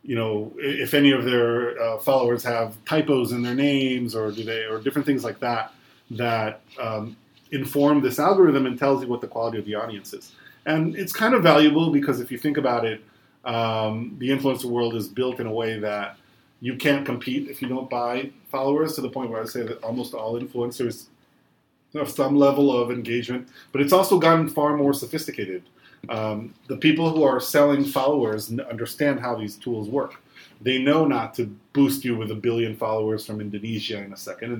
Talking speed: 200 wpm